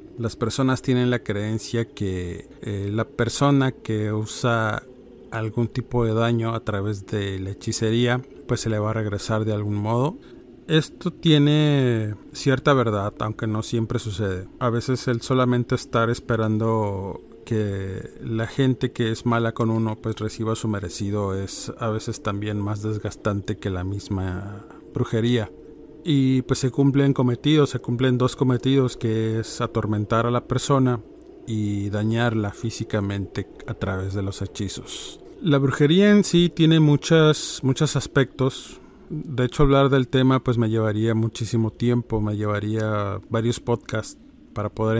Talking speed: 150 wpm